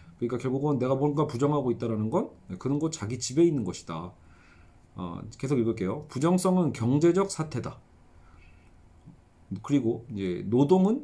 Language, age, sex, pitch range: Korean, 40-59, male, 110-160 Hz